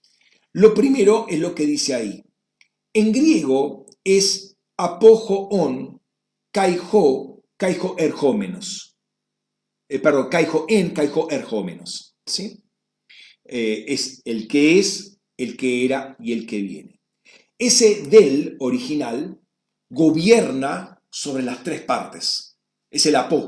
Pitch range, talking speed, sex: 140-210 Hz, 120 wpm, male